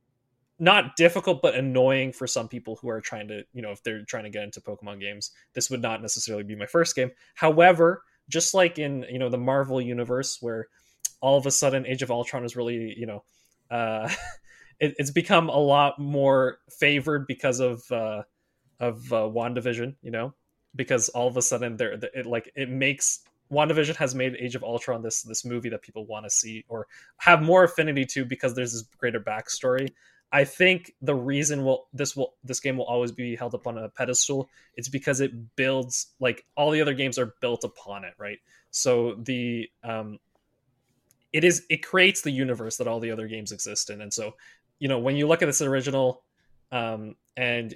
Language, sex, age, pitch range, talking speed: English, male, 20-39, 120-140 Hz, 200 wpm